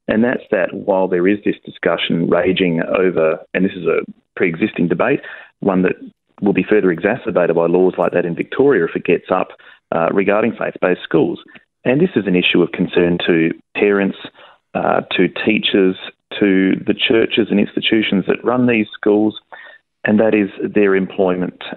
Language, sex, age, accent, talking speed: English, male, 40-59, Australian, 170 wpm